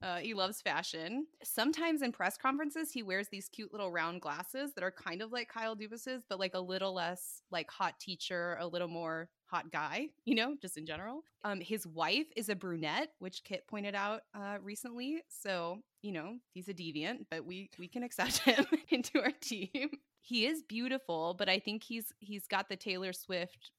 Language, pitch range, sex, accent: English, 170-230 Hz, female, American